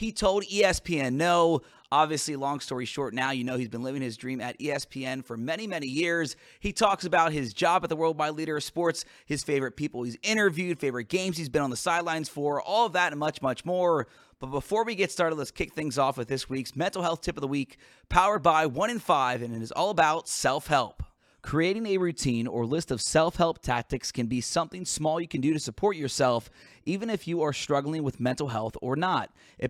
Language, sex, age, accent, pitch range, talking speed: English, male, 30-49, American, 130-170 Hz, 225 wpm